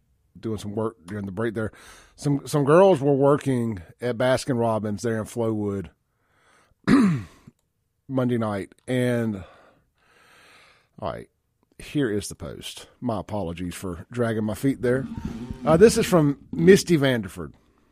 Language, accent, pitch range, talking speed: English, American, 115-155 Hz, 135 wpm